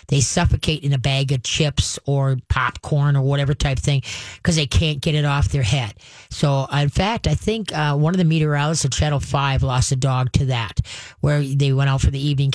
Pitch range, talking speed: 130-155 Hz, 220 wpm